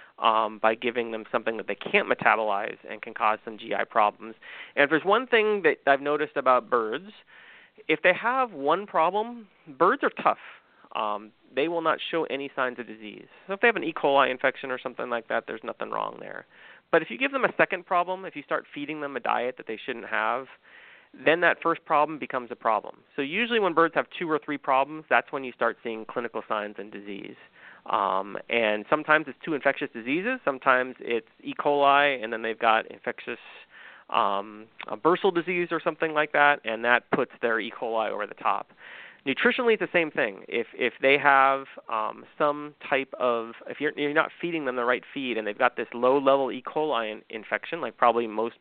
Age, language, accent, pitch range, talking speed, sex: 30-49, English, American, 115-160 Hz, 210 wpm, male